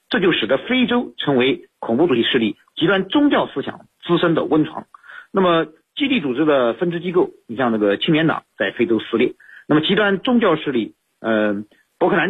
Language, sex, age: Chinese, male, 50-69